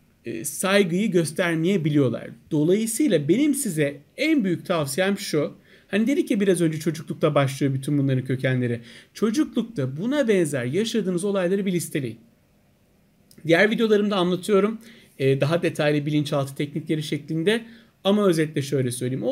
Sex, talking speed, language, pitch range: male, 120 wpm, Turkish, 150-205 Hz